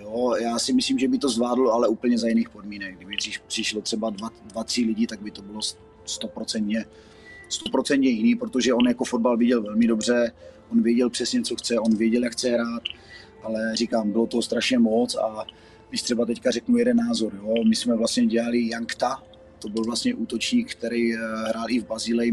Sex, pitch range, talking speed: male, 110-125 Hz, 185 wpm